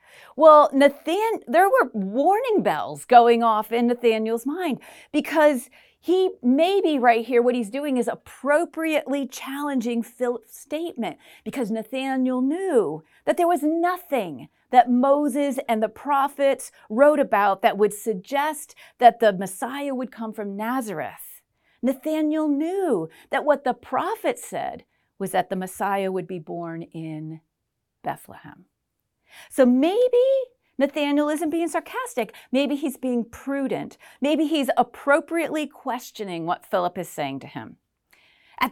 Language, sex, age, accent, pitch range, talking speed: English, female, 40-59, American, 220-300 Hz, 130 wpm